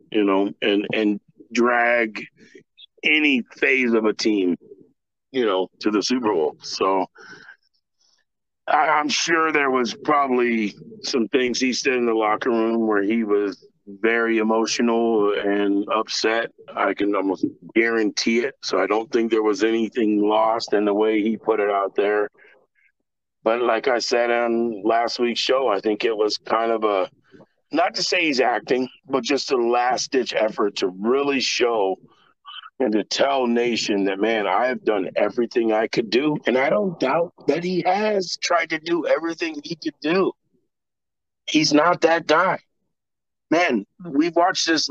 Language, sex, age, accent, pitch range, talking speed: English, male, 40-59, American, 110-150 Hz, 165 wpm